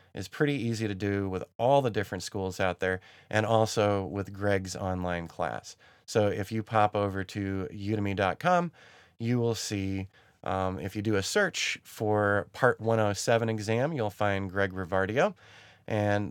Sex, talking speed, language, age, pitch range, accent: male, 160 wpm, English, 30-49, 100-120 Hz, American